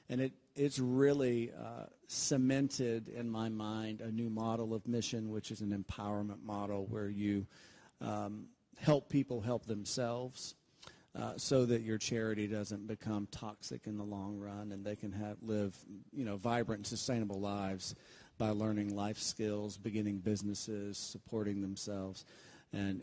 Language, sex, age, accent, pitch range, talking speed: English, male, 40-59, American, 105-125 Hz, 150 wpm